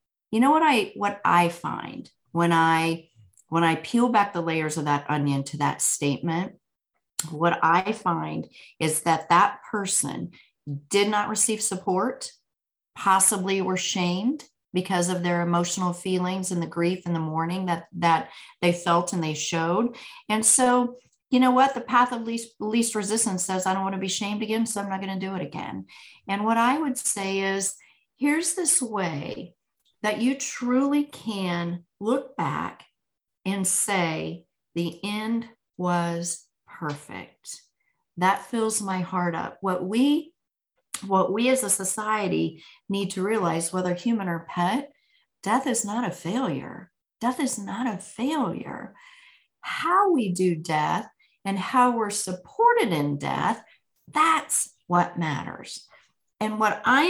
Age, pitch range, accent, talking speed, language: 40-59, 170-240 Hz, American, 155 wpm, English